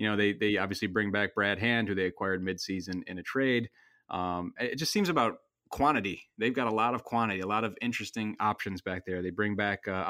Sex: male